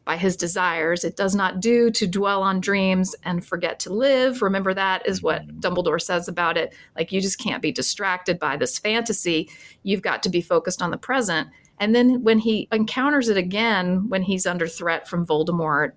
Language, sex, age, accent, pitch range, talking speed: English, female, 40-59, American, 175-235 Hz, 200 wpm